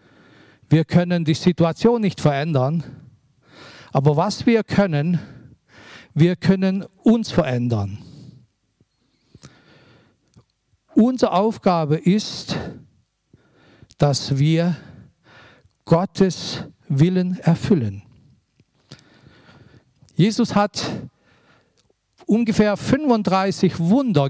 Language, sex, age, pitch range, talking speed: German, male, 50-69, 150-210 Hz, 65 wpm